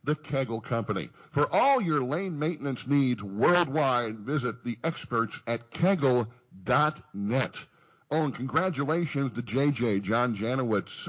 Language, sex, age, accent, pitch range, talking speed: English, male, 50-69, American, 110-145 Hz, 120 wpm